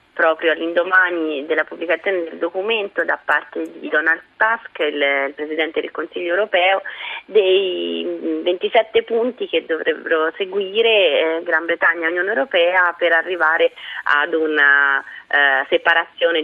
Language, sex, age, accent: Italian, female, 30-49, native